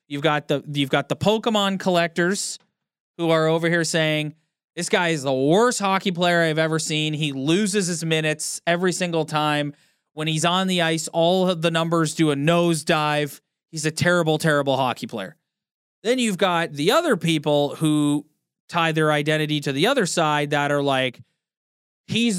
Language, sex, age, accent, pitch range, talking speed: English, male, 30-49, American, 145-175 Hz, 175 wpm